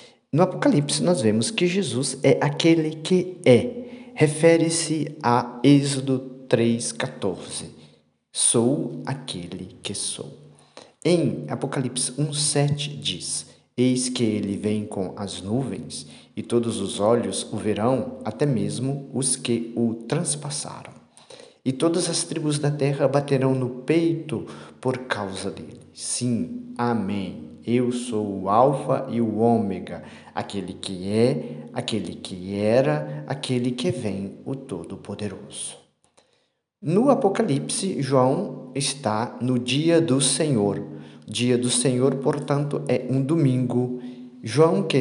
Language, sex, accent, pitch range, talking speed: Portuguese, male, Brazilian, 110-145 Hz, 120 wpm